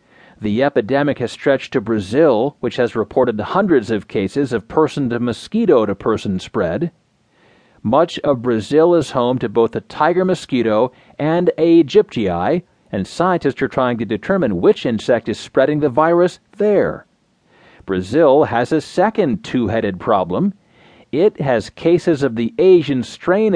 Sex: male